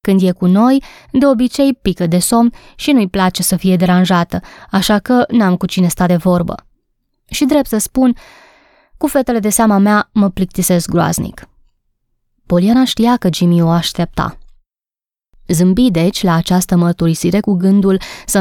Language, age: Romanian, 20-39